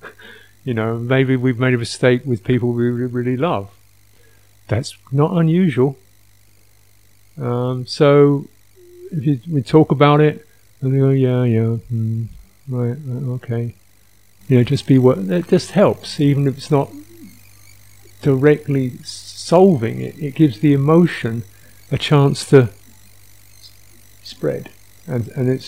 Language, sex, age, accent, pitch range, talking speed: English, male, 50-69, British, 100-135 Hz, 135 wpm